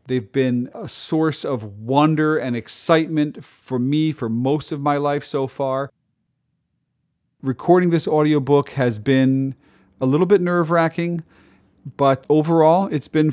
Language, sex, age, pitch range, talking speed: English, male, 40-59, 120-155 Hz, 135 wpm